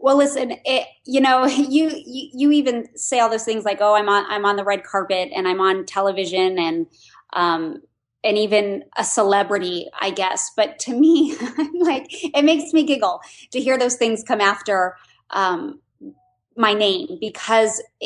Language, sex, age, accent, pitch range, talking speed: English, female, 20-39, American, 185-225 Hz, 175 wpm